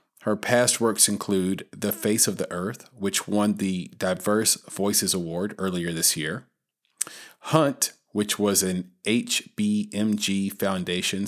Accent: American